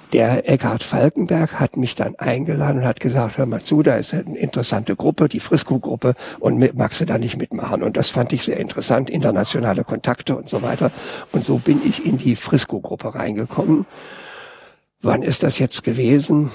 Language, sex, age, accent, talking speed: German, male, 60-79, German, 180 wpm